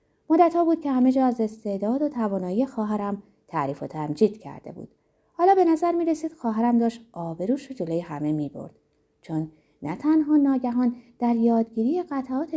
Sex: female